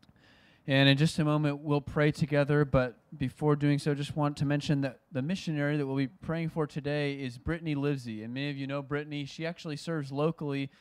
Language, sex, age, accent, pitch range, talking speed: English, male, 20-39, American, 125-155 Hz, 210 wpm